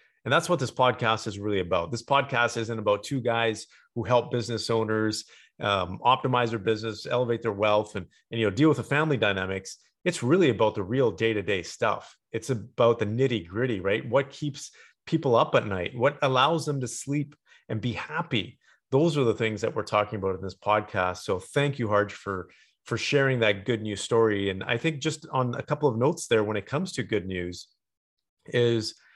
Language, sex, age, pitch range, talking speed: English, male, 30-49, 105-135 Hz, 205 wpm